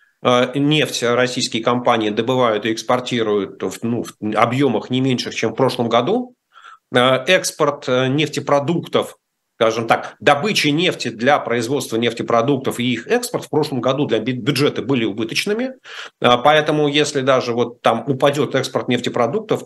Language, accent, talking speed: Russian, native, 130 wpm